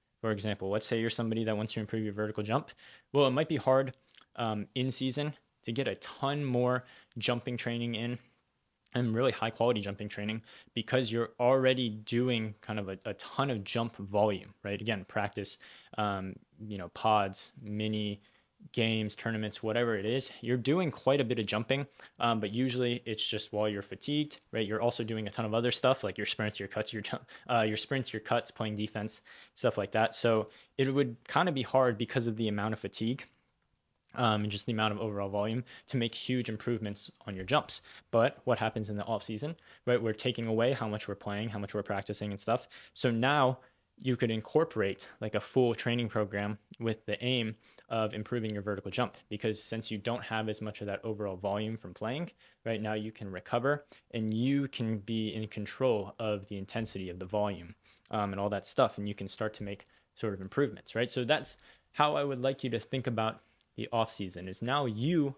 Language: English